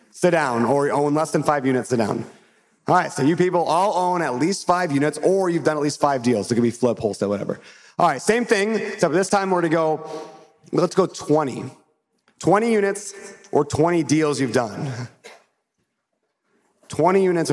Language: English